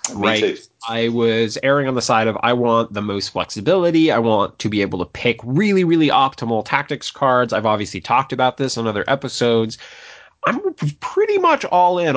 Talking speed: 185 wpm